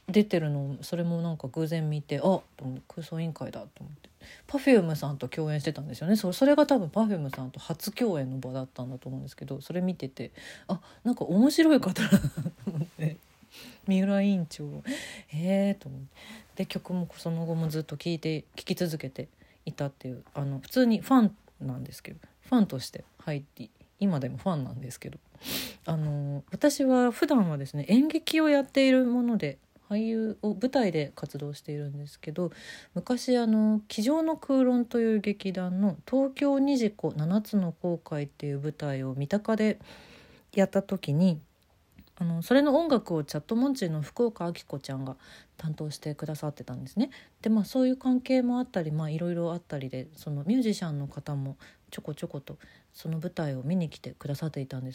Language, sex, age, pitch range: Japanese, female, 40-59, 145-215 Hz